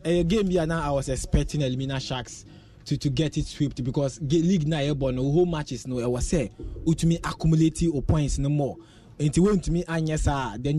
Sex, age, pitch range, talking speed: male, 20-39, 140-170 Hz, 215 wpm